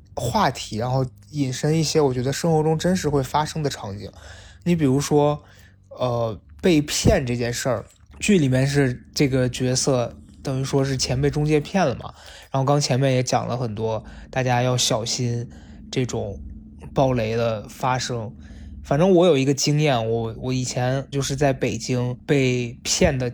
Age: 20-39